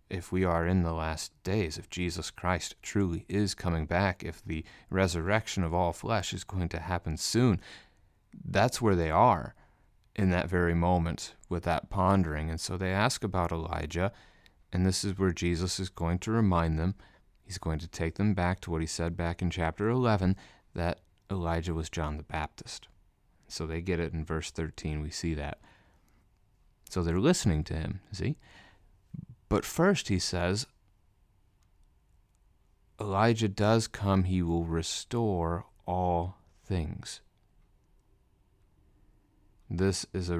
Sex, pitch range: male, 85-100 Hz